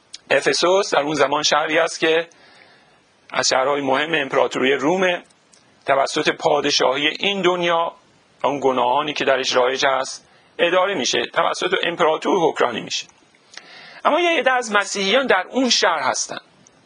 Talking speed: 130 wpm